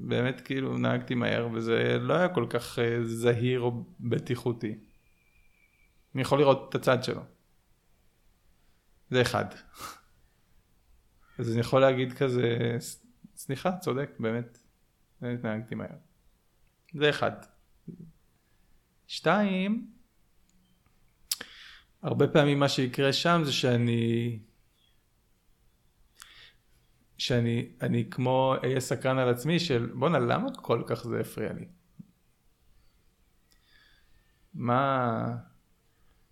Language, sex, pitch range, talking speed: Hebrew, male, 115-135 Hz, 95 wpm